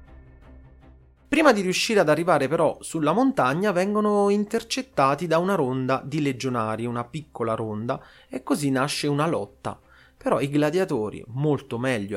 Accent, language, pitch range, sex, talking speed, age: native, Italian, 110-170 Hz, male, 140 wpm, 30-49